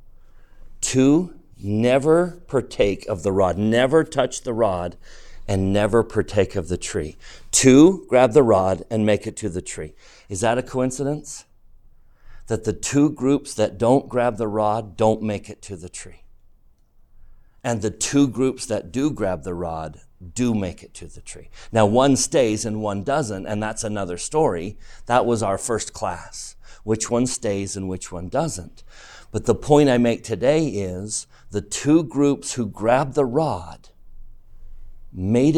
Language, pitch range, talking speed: English, 105-130 Hz, 165 wpm